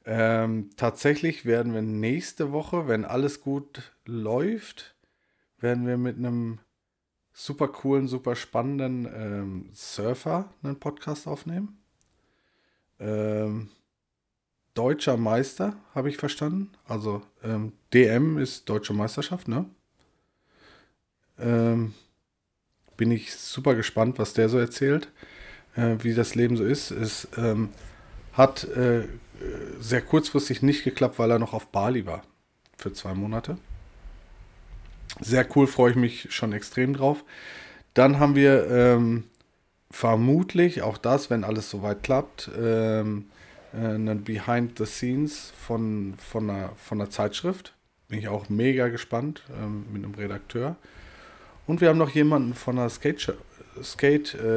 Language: German